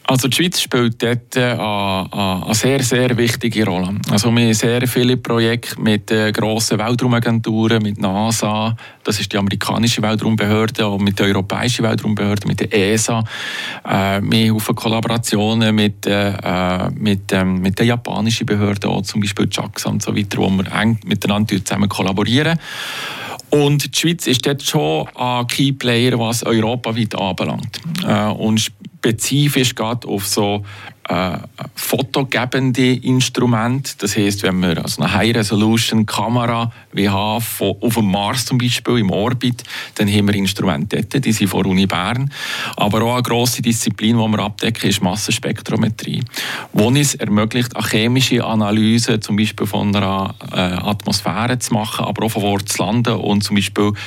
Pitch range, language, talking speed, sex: 105-120 Hz, German, 150 wpm, male